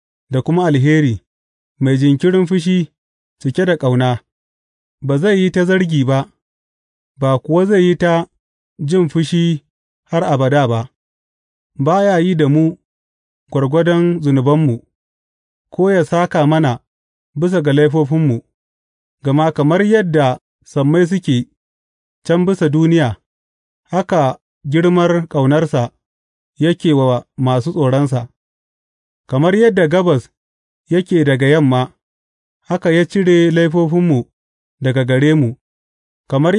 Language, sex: English, male